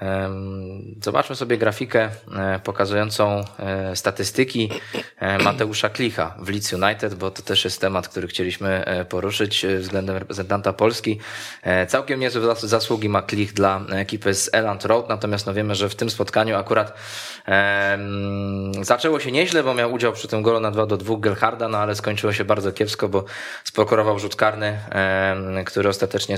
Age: 20-39